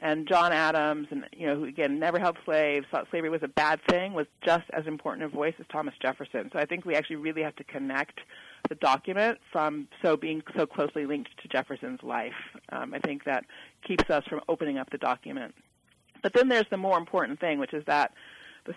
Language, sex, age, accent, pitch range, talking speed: English, female, 40-59, American, 155-185 Hz, 215 wpm